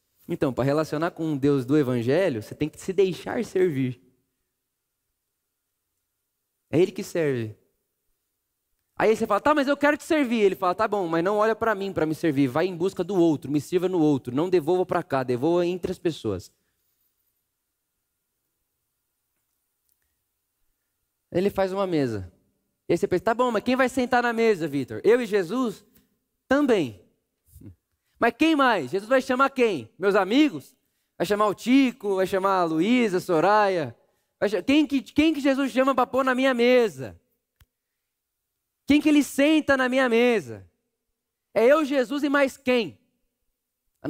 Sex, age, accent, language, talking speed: male, 20-39, Brazilian, Portuguese, 165 wpm